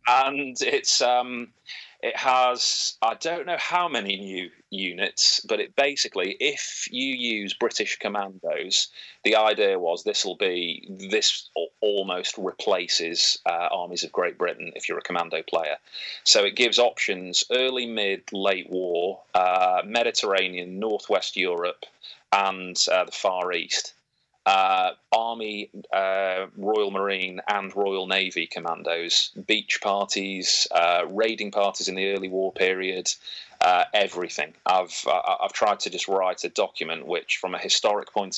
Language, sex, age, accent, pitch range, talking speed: English, male, 30-49, British, 95-140 Hz, 140 wpm